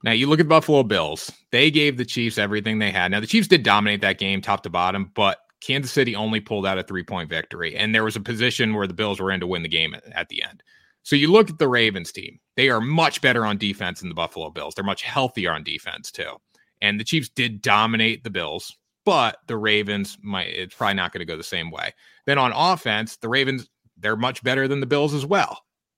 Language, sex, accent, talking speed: English, male, American, 245 wpm